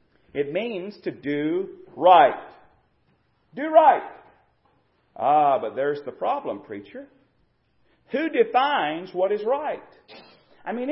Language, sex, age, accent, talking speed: English, male, 40-59, American, 110 wpm